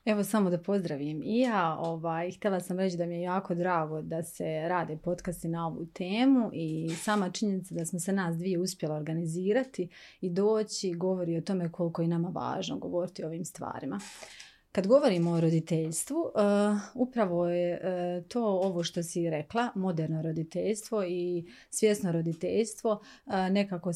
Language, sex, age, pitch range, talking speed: Croatian, female, 30-49, 170-210 Hz, 165 wpm